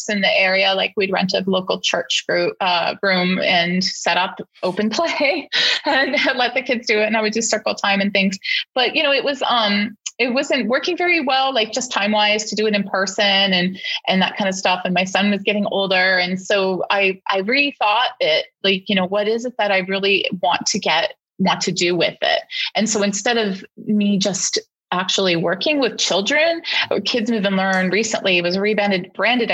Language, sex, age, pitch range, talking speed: English, female, 30-49, 190-225 Hz, 215 wpm